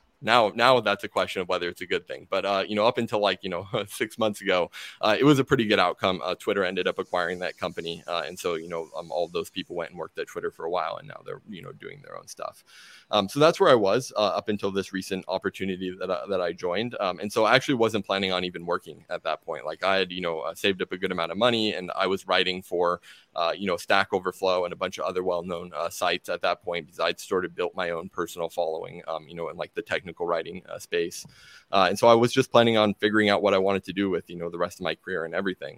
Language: English